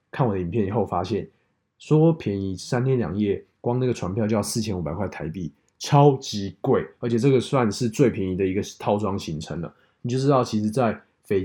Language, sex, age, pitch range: Chinese, male, 20-39, 105-130 Hz